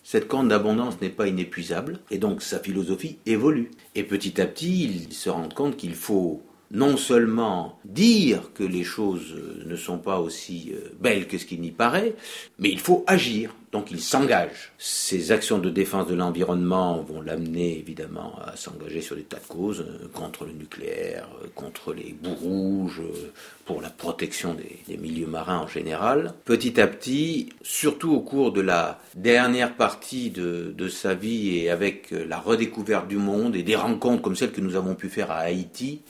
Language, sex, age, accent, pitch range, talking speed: French, male, 50-69, French, 90-110 Hz, 180 wpm